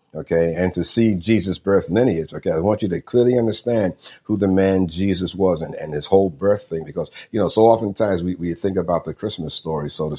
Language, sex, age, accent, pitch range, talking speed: English, male, 50-69, American, 85-100 Hz, 230 wpm